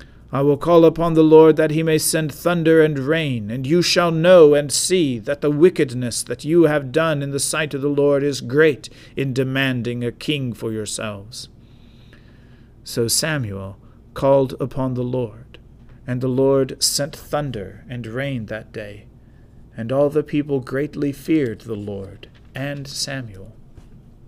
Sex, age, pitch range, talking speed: male, 50-69, 120-155 Hz, 160 wpm